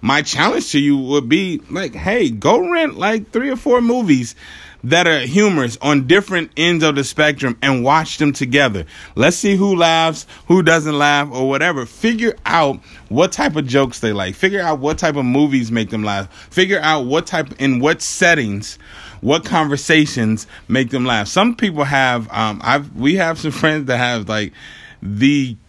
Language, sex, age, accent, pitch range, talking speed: English, male, 20-39, American, 115-160 Hz, 180 wpm